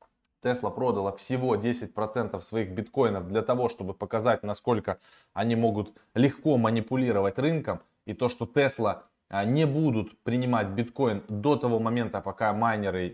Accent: native